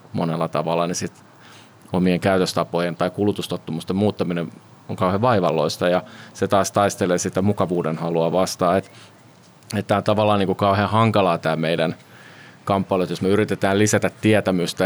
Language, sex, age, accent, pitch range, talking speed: Finnish, male, 30-49, native, 90-100 Hz, 145 wpm